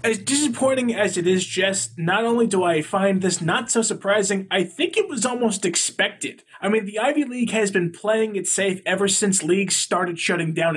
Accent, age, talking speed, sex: American, 20-39, 205 wpm, male